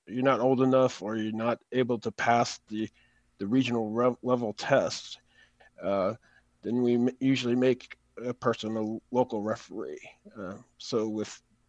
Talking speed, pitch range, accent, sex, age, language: 155 wpm, 110-130 Hz, American, male, 40-59, English